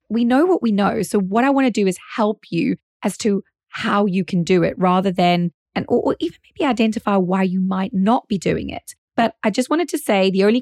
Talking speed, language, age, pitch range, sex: 250 wpm, English, 20-39, 185-235 Hz, female